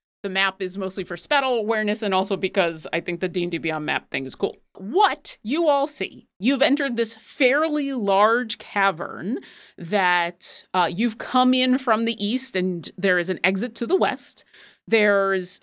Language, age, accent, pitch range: English, 30-49, American, 190-255 Hz